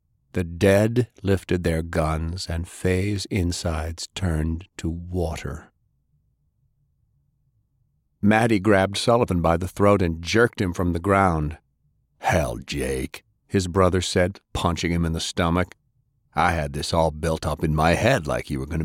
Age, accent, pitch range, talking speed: 50-69, American, 85-105 Hz, 145 wpm